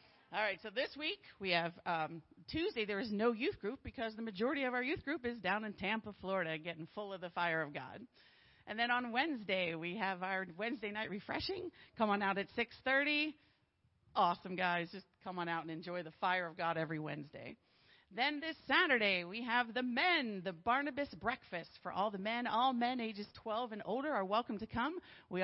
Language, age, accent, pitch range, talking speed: English, 40-59, American, 195-275 Hz, 205 wpm